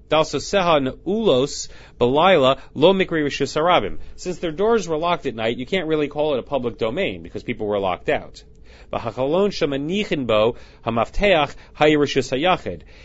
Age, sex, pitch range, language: 30-49, male, 110-165 Hz, English